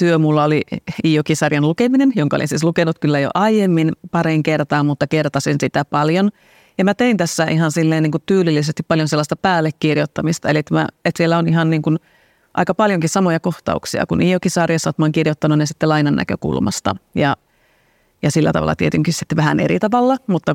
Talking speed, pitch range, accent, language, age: 175 wpm, 150-175 Hz, native, Finnish, 30-49